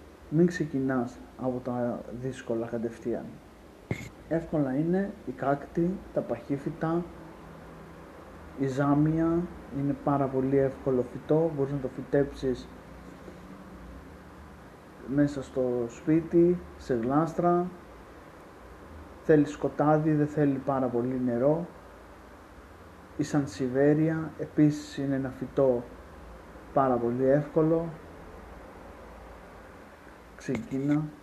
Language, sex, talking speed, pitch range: Greek, male, 85 wpm, 120-150 Hz